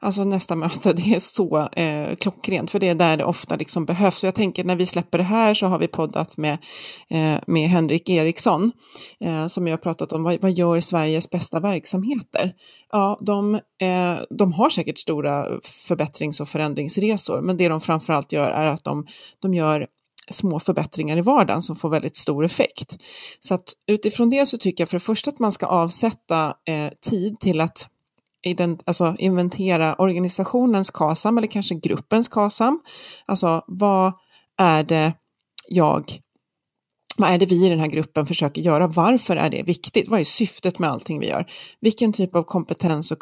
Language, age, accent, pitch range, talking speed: Swedish, 30-49, native, 160-200 Hz, 185 wpm